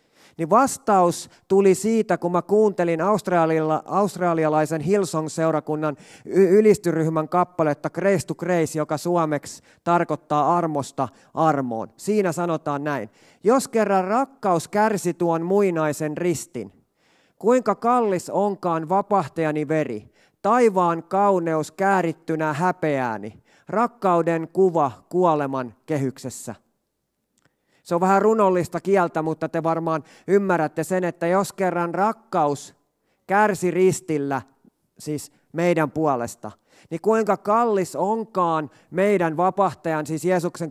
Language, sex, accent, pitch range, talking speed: Finnish, male, native, 155-195 Hz, 100 wpm